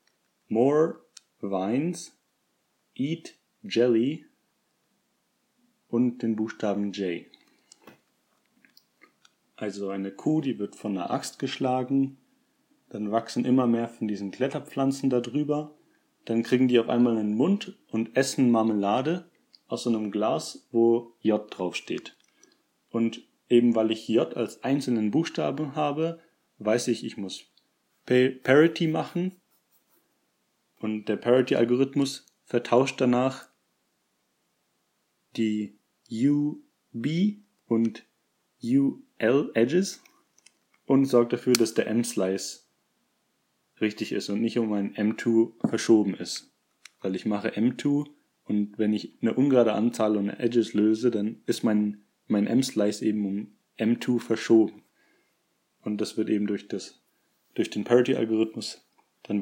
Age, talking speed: 40-59, 120 wpm